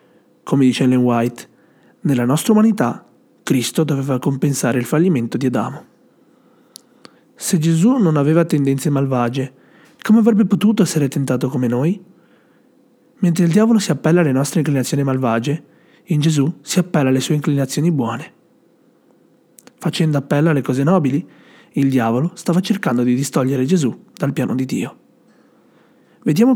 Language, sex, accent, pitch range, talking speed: Italian, male, native, 140-205 Hz, 140 wpm